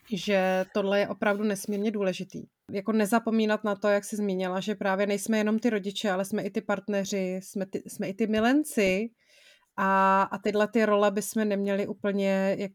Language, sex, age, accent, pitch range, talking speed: Czech, female, 30-49, native, 200-225 Hz, 180 wpm